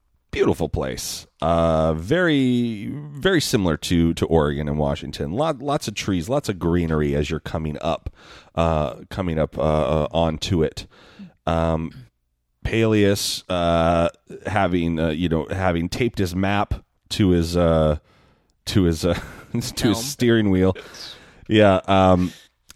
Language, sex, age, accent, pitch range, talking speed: English, male, 30-49, American, 85-115 Hz, 135 wpm